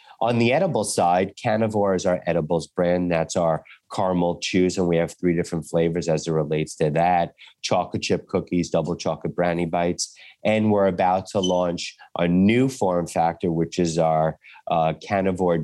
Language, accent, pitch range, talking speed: English, American, 85-100 Hz, 175 wpm